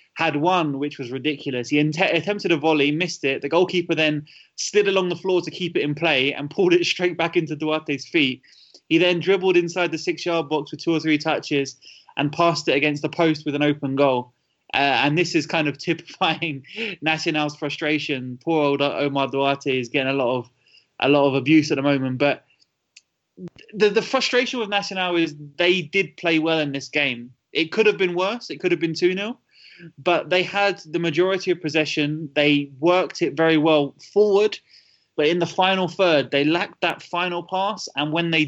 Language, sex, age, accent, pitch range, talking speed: English, male, 20-39, British, 150-180 Hz, 200 wpm